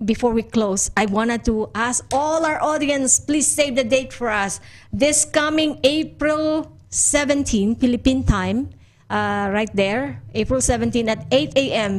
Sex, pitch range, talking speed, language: female, 220-275 Hz, 150 wpm, Spanish